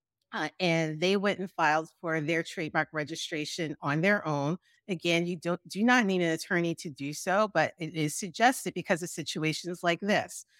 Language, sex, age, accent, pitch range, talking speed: English, female, 40-59, American, 155-200 Hz, 190 wpm